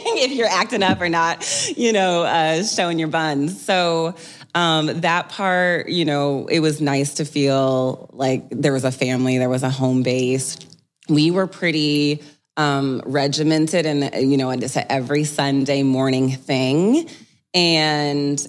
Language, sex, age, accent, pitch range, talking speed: English, female, 20-39, American, 145-185 Hz, 150 wpm